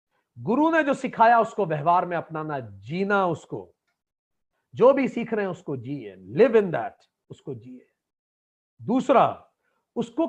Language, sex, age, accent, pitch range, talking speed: Hindi, male, 40-59, native, 170-250 Hz, 140 wpm